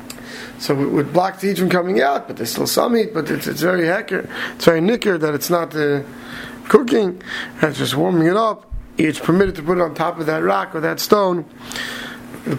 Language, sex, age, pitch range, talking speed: English, male, 30-49, 155-190 Hz, 225 wpm